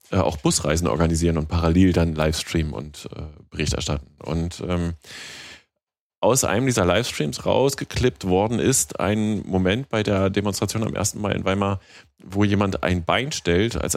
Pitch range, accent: 85-105 Hz, German